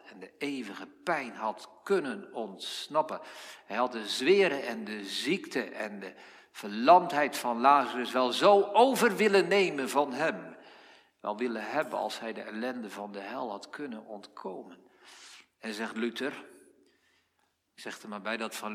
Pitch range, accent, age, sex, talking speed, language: 100-130 Hz, Dutch, 50-69, male, 155 wpm, Dutch